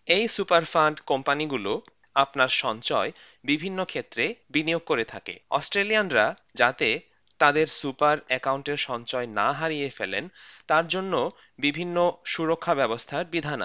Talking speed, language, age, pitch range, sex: 115 wpm, Bengali, 30-49, 130-170 Hz, male